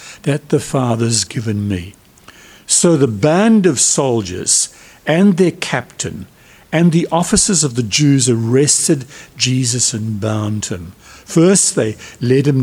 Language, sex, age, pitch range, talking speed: English, male, 60-79, 130-170 Hz, 135 wpm